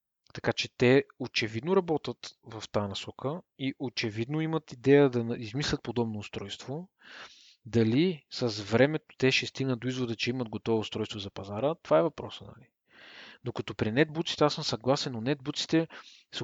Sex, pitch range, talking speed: male, 115-145 Hz, 155 wpm